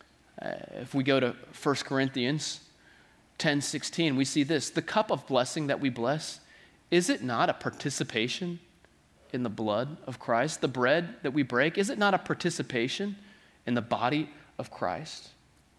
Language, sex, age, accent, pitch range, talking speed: English, male, 30-49, American, 110-150 Hz, 165 wpm